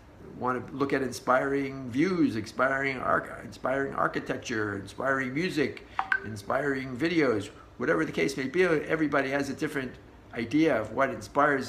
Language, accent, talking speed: English, American, 140 wpm